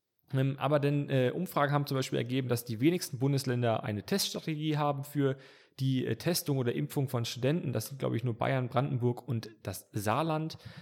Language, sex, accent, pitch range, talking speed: German, male, German, 115-140 Hz, 180 wpm